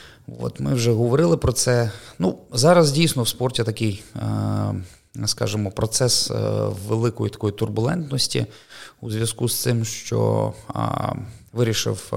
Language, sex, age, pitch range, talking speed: Ukrainian, male, 20-39, 110-125 Hz, 115 wpm